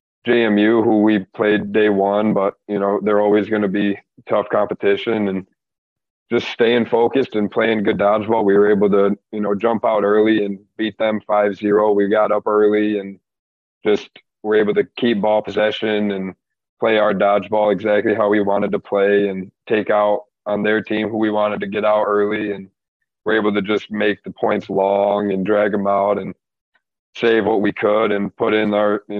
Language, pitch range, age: English, 100-110 Hz, 20-39